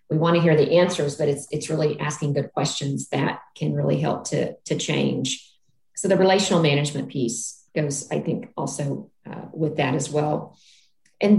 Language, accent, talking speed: English, American, 180 wpm